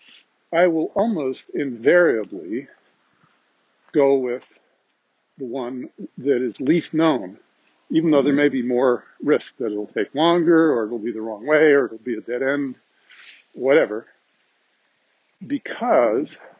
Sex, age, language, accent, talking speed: male, 50-69, English, American, 145 wpm